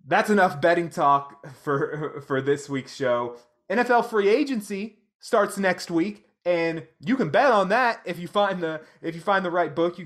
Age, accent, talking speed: 30-49, American, 190 wpm